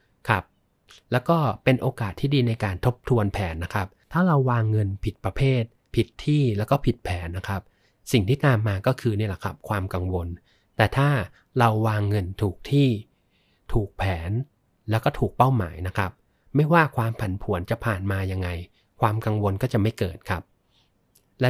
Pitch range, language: 100-125 Hz, Thai